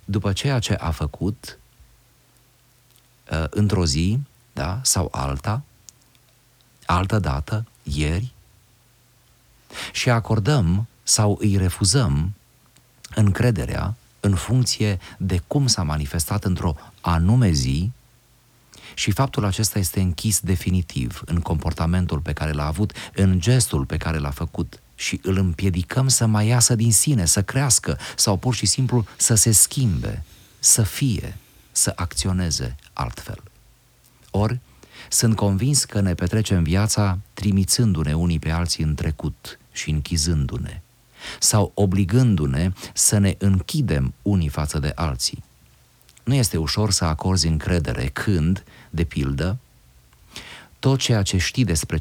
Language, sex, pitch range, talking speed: Romanian, male, 85-120 Hz, 125 wpm